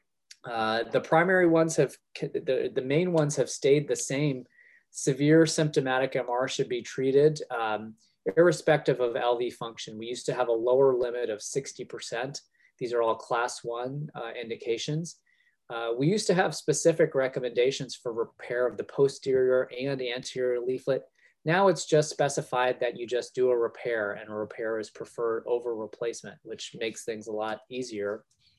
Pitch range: 120-150 Hz